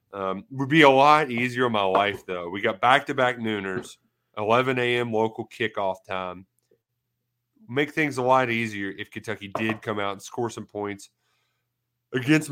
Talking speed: 175 wpm